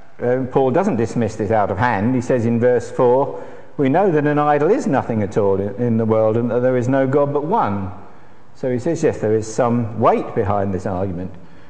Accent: British